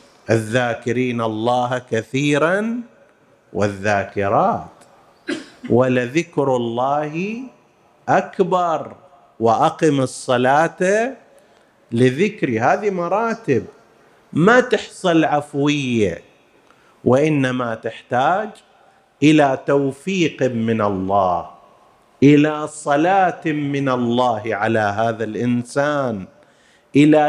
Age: 50-69